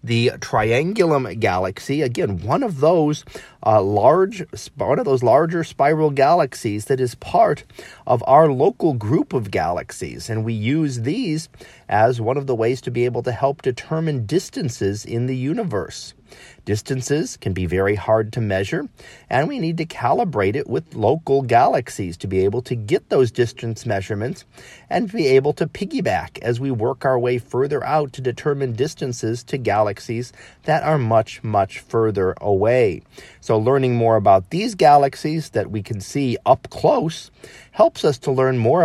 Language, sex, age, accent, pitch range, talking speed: English, male, 40-59, American, 115-150 Hz, 170 wpm